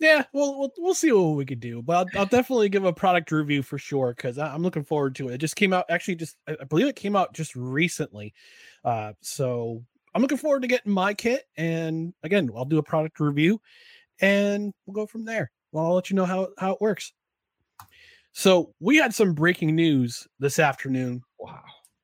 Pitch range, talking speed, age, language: 140-190 Hz, 205 wpm, 30-49, English